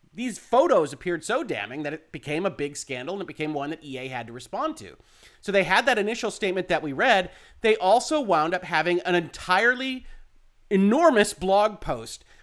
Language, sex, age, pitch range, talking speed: English, male, 40-59, 165-245 Hz, 195 wpm